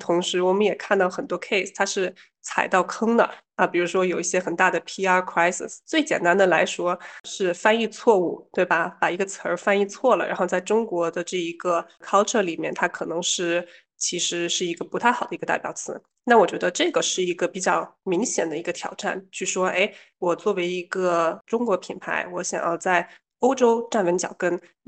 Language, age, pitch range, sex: Chinese, 20-39, 175-215 Hz, female